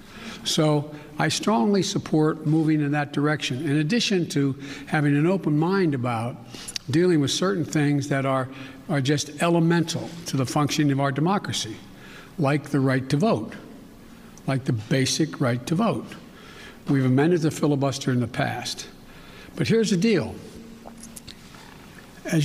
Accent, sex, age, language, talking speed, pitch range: American, male, 60-79, English, 145 wpm, 140-165 Hz